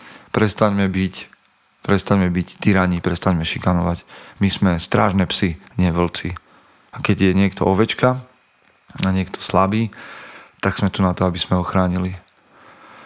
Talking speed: 130 wpm